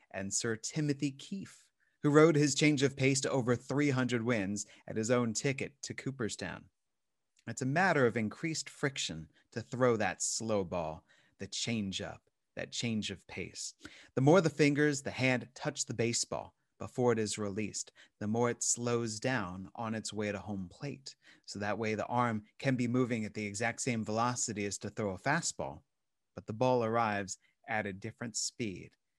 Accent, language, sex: American, English, male